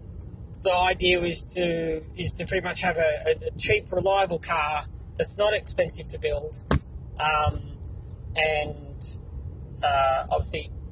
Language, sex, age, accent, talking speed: English, male, 30-49, Australian, 125 wpm